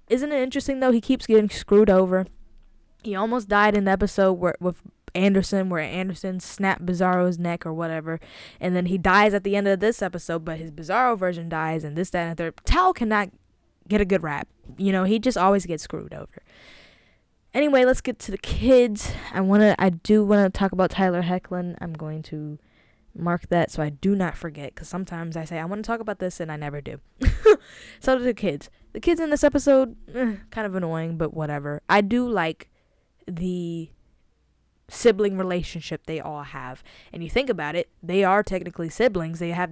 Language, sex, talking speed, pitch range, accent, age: English, female, 205 wpm, 165-205 Hz, American, 10-29